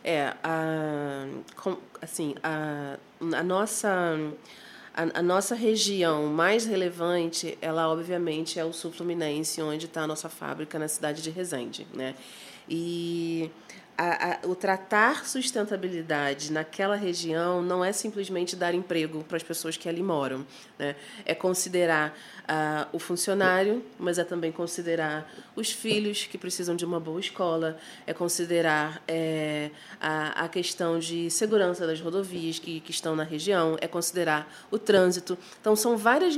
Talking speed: 135 wpm